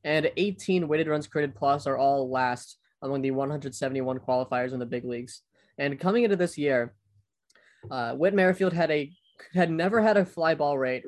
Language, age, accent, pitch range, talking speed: English, 20-39, American, 130-155 Hz, 185 wpm